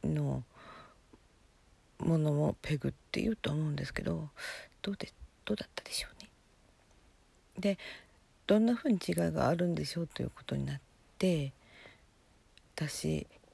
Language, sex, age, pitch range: Japanese, female, 50-69, 145-225 Hz